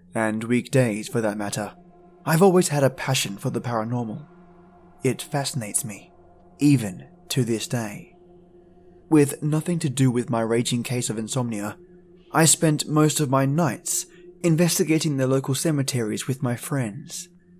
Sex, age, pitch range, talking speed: male, 20-39, 120-165 Hz, 145 wpm